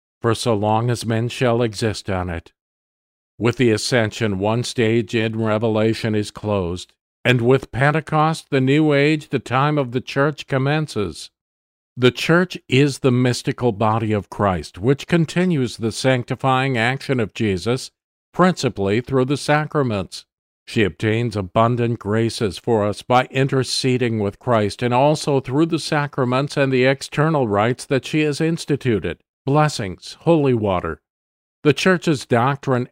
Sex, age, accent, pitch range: male, 50-69, American, 110-140 Hz